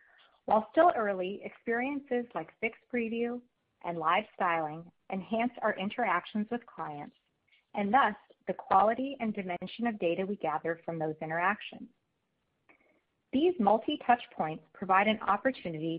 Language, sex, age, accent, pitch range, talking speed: English, female, 40-59, American, 170-235 Hz, 130 wpm